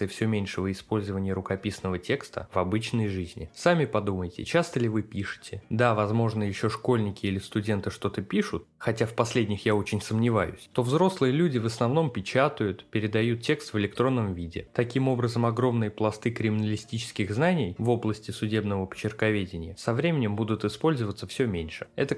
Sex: male